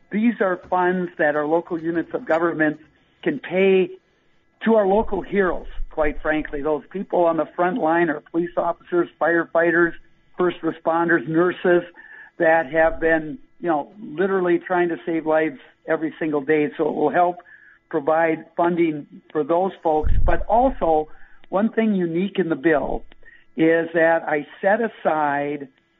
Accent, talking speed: American, 150 wpm